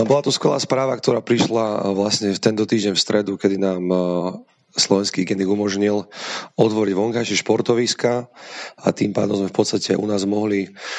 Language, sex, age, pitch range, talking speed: Slovak, male, 30-49, 95-110 Hz, 160 wpm